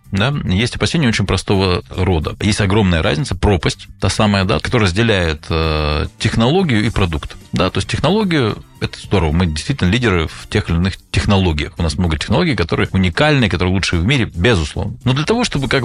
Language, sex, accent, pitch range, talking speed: Russian, male, native, 90-110 Hz, 185 wpm